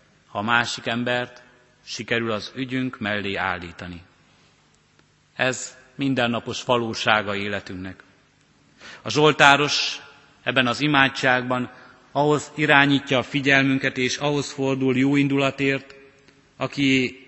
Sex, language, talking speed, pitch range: male, Hungarian, 95 wpm, 110-135 Hz